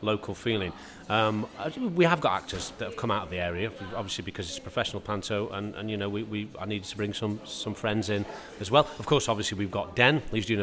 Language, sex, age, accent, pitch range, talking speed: English, male, 40-59, British, 100-135 Hz, 250 wpm